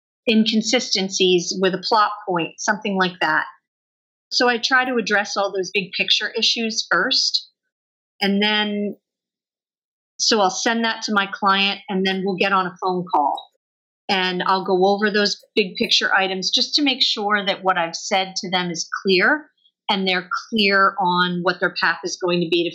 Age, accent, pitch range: 40-59, American, 180-215 Hz